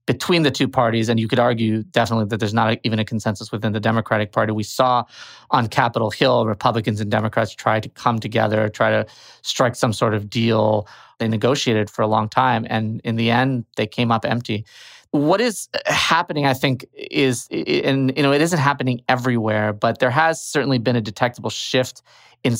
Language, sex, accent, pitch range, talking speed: English, male, American, 110-130 Hz, 200 wpm